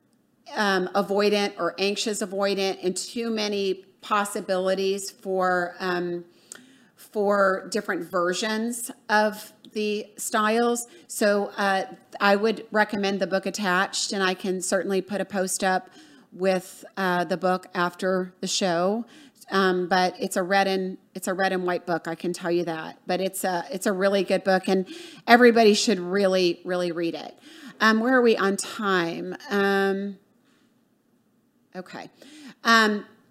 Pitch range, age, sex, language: 190-230 Hz, 40-59, female, English